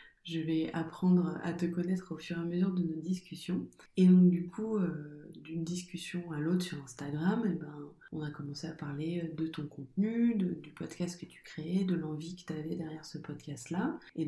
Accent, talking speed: French, 200 wpm